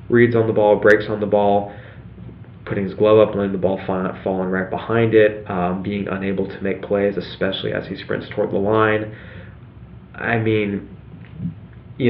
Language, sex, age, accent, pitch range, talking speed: English, male, 20-39, American, 100-110 Hz, 175 wpm